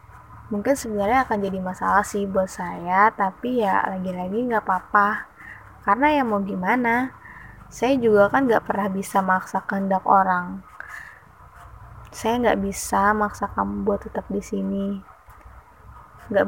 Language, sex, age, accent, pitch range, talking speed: Indonesian, female, 20-39, native, 190-210 Hz, 130 wpm